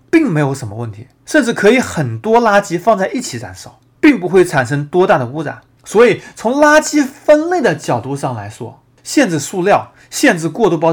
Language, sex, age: Chinese, male, 30-49